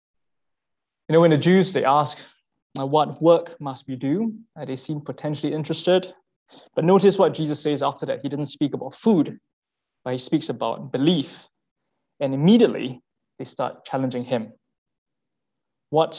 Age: 20-39